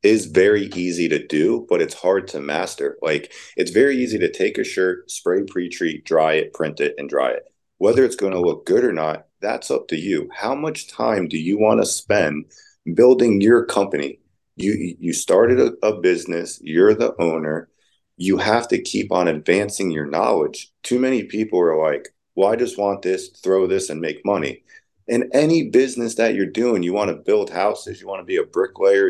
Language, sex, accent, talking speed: English, male, American, 205 wpm